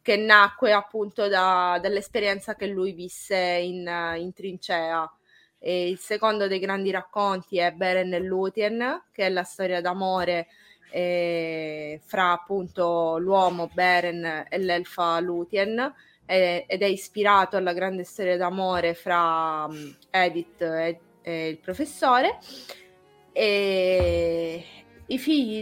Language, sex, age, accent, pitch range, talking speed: Italian, female, 20-39, native, 175-200 Hz, 120 wpm